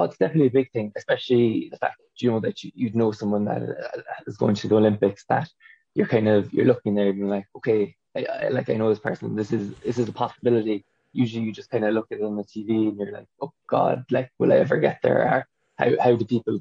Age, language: 20-39, English